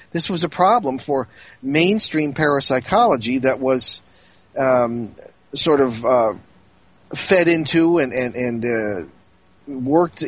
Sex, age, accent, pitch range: male, 40-59, American, 125-160 Hz